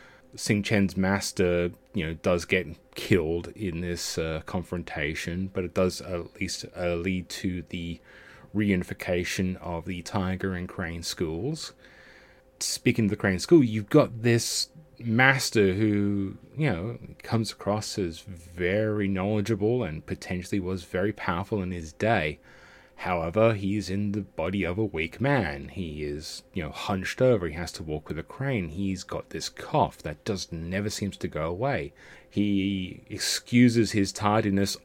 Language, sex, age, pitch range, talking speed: English, male, 30-49, 90-110 Hz, 155 wpm